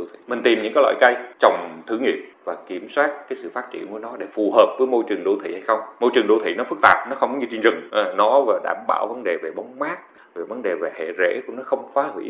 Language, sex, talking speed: Vietnamese, male, 295 wpm